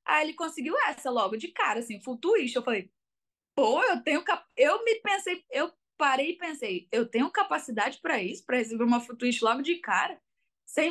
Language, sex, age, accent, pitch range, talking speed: Portuguese, female, 10-29, Brazilian, 225-285 Hz, 195 wpm